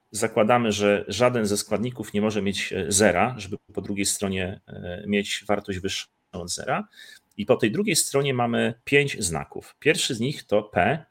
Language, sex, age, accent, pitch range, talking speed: Polish, male, 30-49, native, 100-140 Hz, 170 wpm